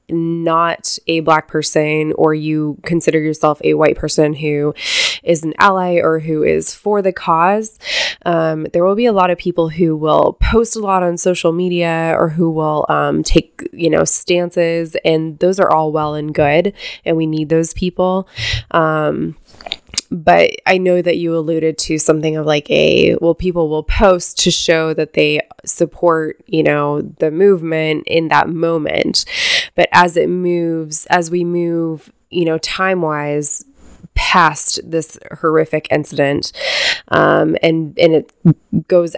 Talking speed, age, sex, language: 160 wpm, 20-39, female, English